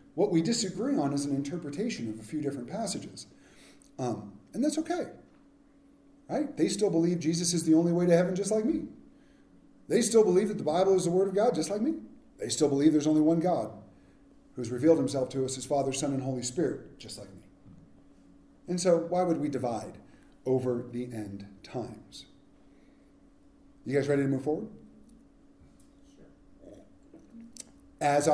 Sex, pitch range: male, 150-235 Hz